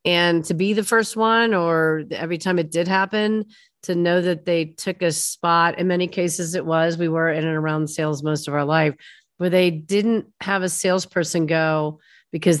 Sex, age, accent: female, 40-59, American